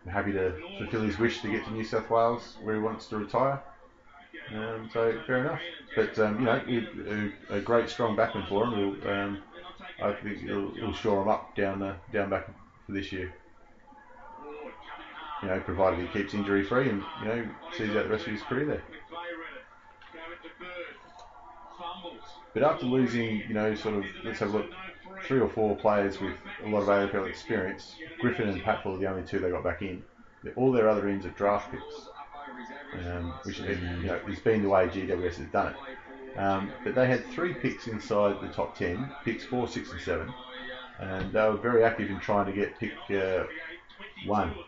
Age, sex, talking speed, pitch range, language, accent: 30-49, male, 195 wpm, 100-115 Hz, English, Australian